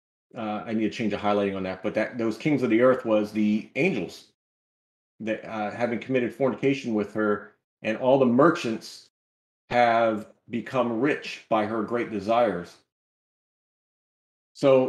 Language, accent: English, American